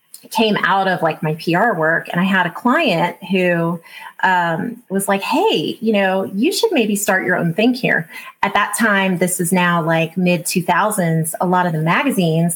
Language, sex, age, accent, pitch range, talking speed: English, female, 30-49, American, 170-205 Hz, 195 wpm